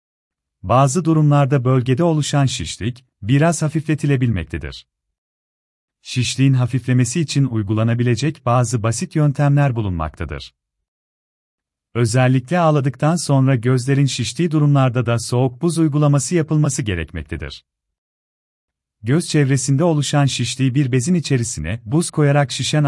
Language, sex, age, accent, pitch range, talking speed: Turkish, male, 40-59, native, 95-150 Hz, 95 wpm